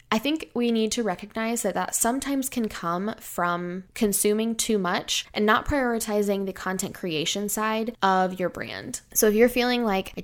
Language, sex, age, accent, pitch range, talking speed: English, female, 10-29, American, 185-225 Hz, 180 wpm